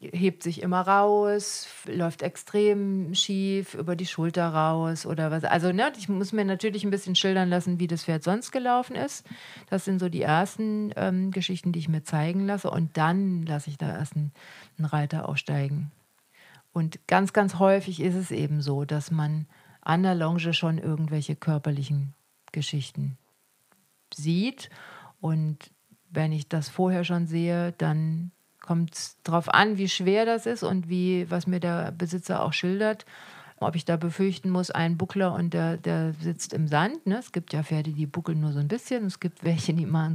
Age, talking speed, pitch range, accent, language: 40-59, 180 wpm, 155-185 Hz, German, German